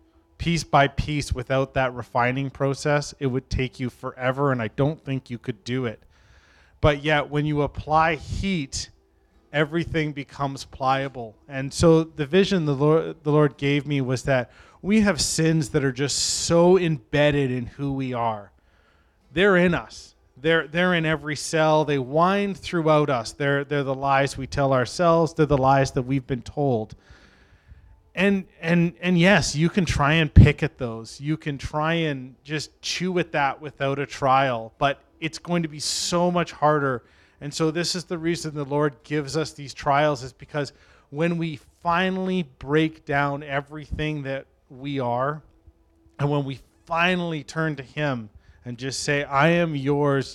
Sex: male